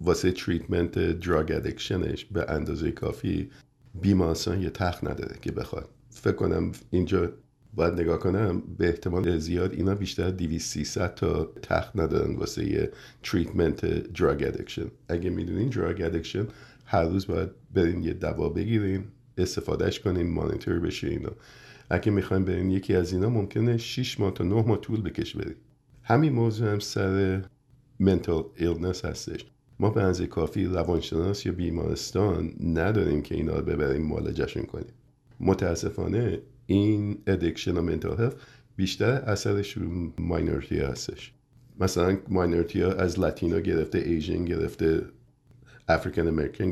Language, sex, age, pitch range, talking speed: Persian, male, 50-69, 85-115 Hz, 130 wpm